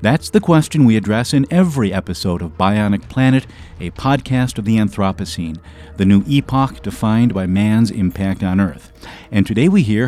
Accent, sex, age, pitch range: American, male, 50-69, 95-130 Hz